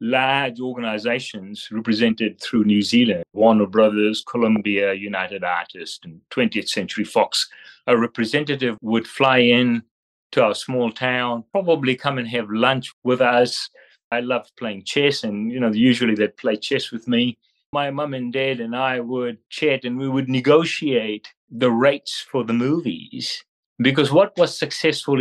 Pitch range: 115-140 Hz